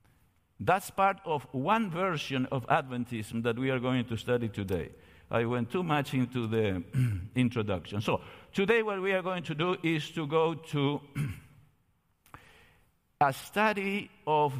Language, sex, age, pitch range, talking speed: English, male, 50-69, 115-150 Hz, 150 wpm